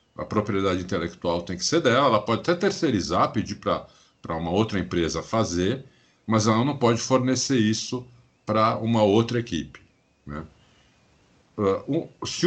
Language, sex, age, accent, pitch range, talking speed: Portuguese, male, 50-69, Brazilian, 95-135 Hz, 145 wpm